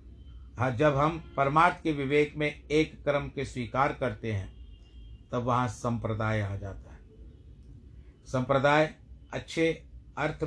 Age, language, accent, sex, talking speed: 50-69, Hindi, native, male, 125 wpm